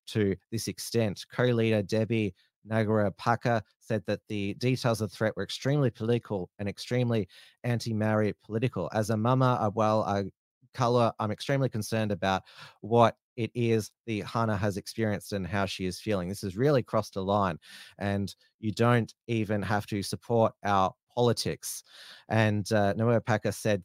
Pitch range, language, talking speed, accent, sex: 100-125 Hz, English, 155 wpm, Australian, male